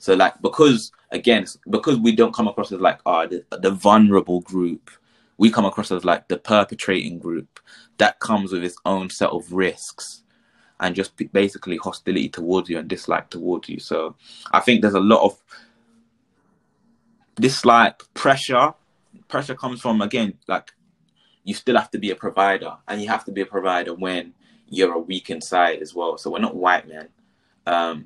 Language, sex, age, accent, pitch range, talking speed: English, male, 20-39, British, 85-105 Hz, 180 wpm